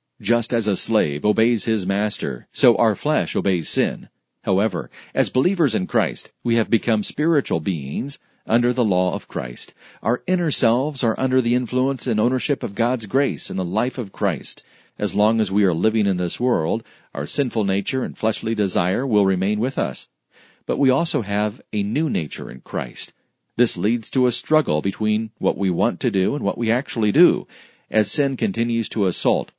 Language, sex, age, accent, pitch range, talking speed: English, male, 40-59, American, 100-125 Hz, 190 wpm